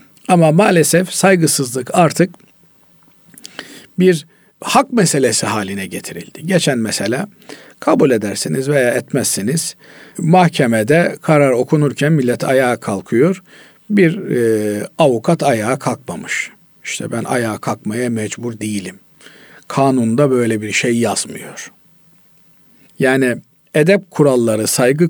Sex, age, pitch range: male, 50-69, 120-170 Hz